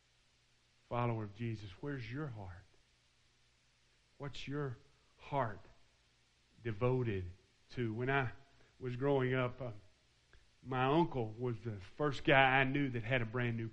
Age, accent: 40-59, American